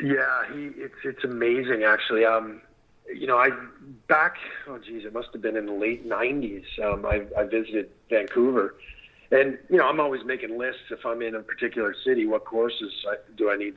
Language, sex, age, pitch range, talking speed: English, male, 40-59, 110-130 Hz, 195 wpm